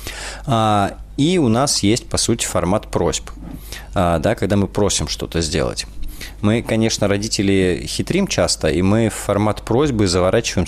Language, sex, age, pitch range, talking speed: Russian, male, 20-39, 85-110 Hz, 140 wpm